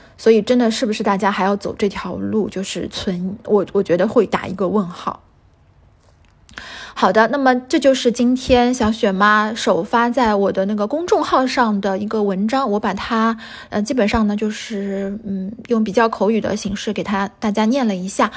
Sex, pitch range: female, 200-240 Hz